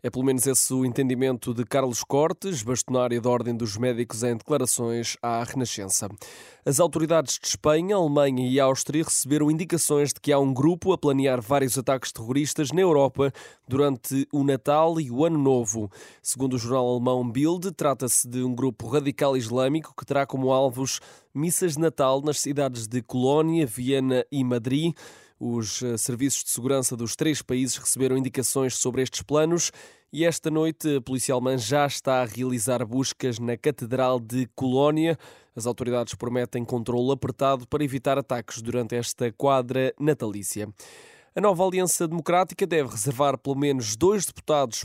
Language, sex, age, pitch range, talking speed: Portuguese, male, 20-39, 125-150 Hz, 160 wpm